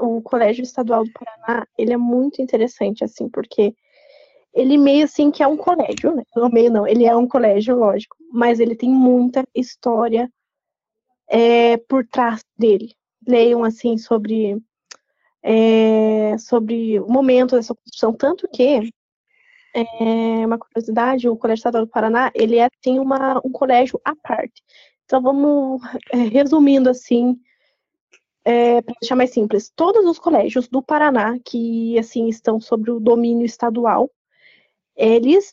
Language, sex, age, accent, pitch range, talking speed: Portuguese, female, 10-29, Brazilian, 230-270 Hz, 145 wpm